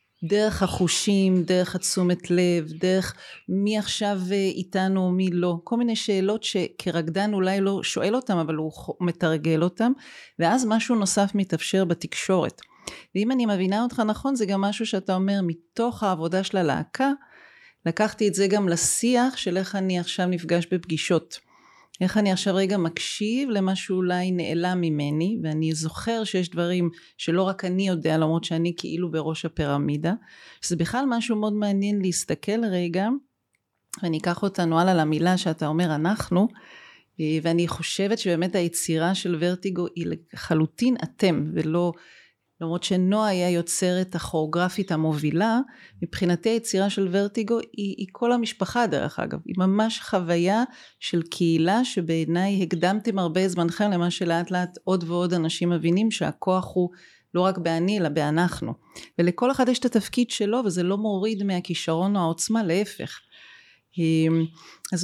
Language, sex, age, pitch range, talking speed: Hebrew, female, 40-59, 170-205 Hz, 140 wpm